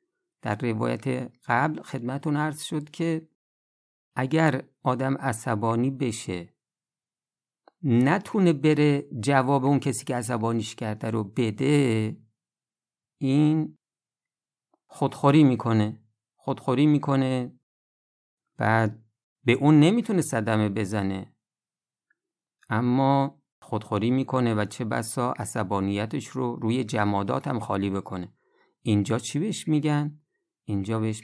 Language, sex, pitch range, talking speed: Persian, male, 110-145 Hz, 100 wpm